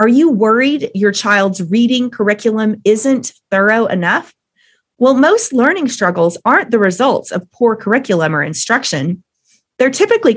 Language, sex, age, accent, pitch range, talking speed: English, female, 30-49, American, 195-265 Hz, 140 wpm